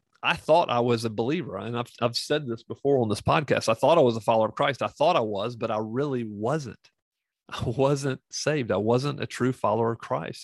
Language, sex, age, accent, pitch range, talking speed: English, male, 40-59, American, 110-135 Hz, 235 wpm